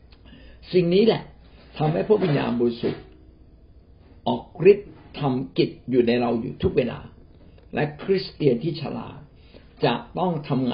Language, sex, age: Thai, male, 60-79